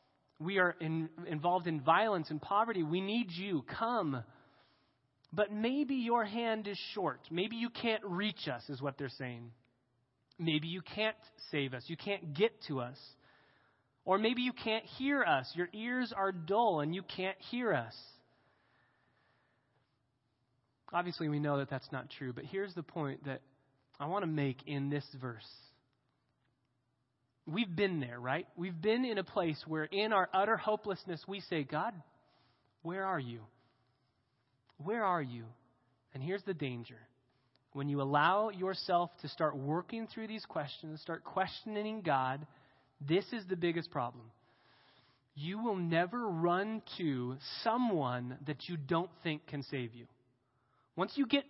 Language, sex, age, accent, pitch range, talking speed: English, male, 30-49, American, 130-200 Hz, 155 wpm